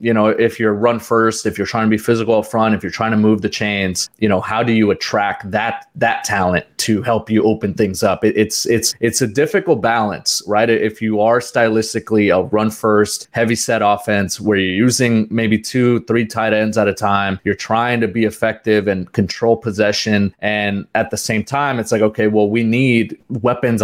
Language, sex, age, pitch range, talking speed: English, male, 20-39, 105-120 Hz, 215 wpm